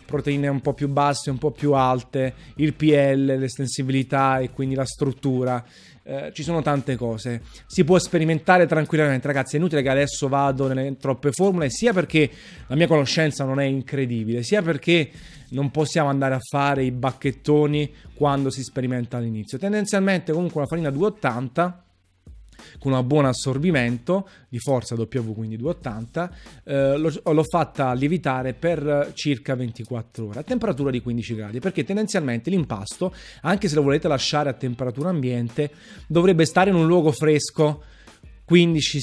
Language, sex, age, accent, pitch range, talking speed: Italian, male, 30-49, native, 125-150 Hz, 155 wpm